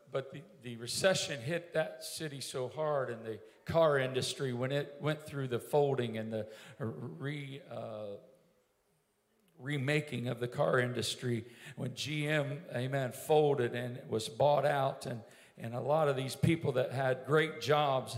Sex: male